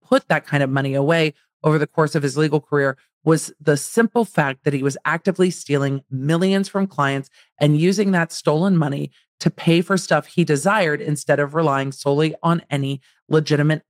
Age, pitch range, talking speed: 40-59, 140-170 Hz, 185 wpm